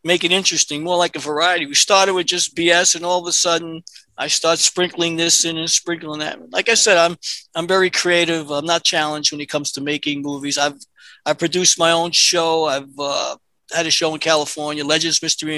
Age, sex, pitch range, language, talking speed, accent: 50-69, male, 150-185 Hz, English, 215 wpm, American